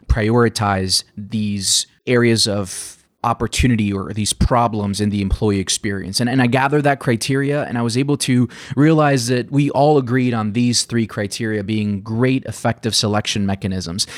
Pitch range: 105-130 Hz